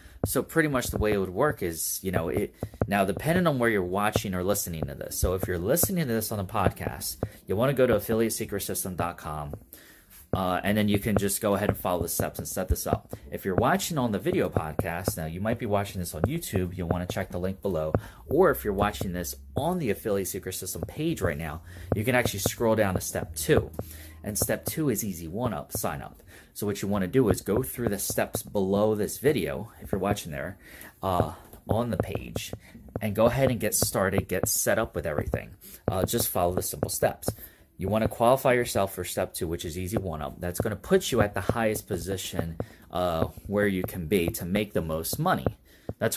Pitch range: 90-110 Hz